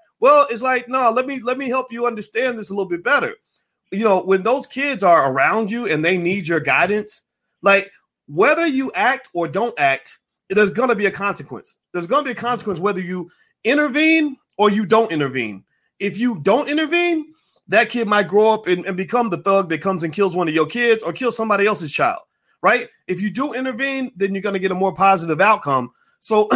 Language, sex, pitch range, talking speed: English, male, 195-255 Hz, 220 wpm